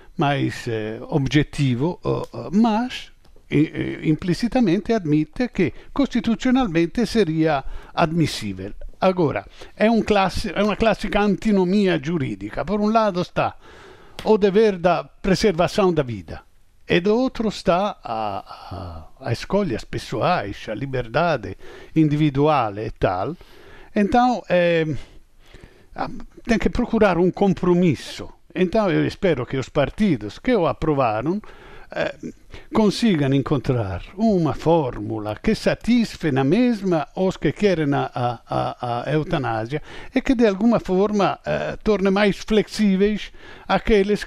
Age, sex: 50-69, male